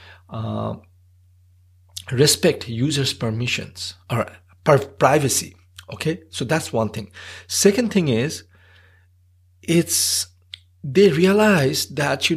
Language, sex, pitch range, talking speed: English, male, 100-140 Hz, 90 wpm